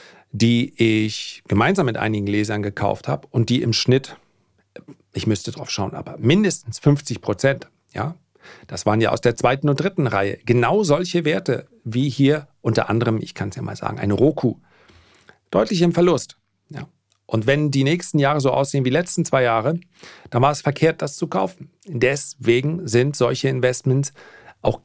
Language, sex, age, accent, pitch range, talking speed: German, male, 40-59, German, 120-170 Hz, 170 wpm